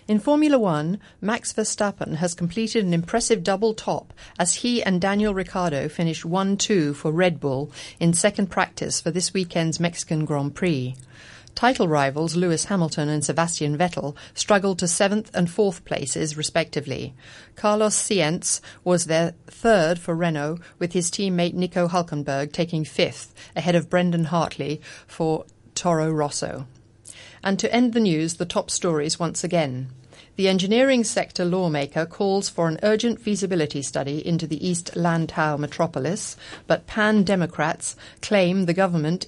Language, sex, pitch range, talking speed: English, female, 150-195 Hz, 145 wpm